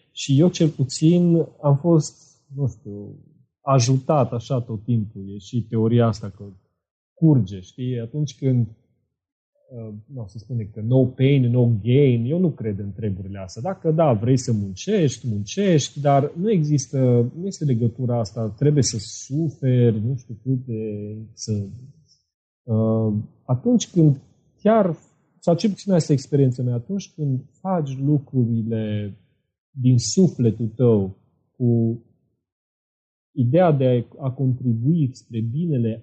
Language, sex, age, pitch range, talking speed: Romanian, male, 30-49, 115-150 Hz, 135 wpm